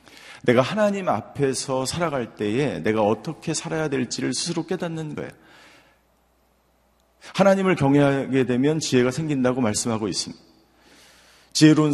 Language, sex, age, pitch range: Korean, male, 40-59, 110-145 Hz